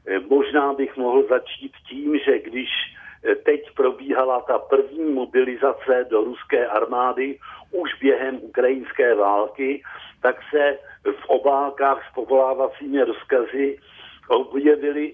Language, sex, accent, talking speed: Czech, male, native, 105 wpm